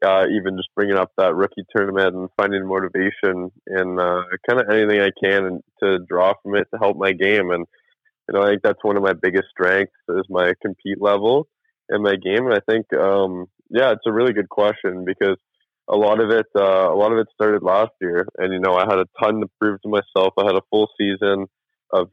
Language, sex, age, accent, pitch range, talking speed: English, male, 20-39, American, 90-100 Hz, 230 wpm